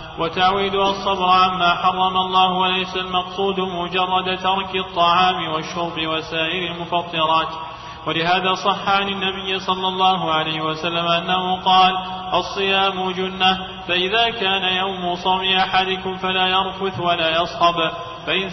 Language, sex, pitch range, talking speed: Arabic, male, 170-190 Hz, 115 wpm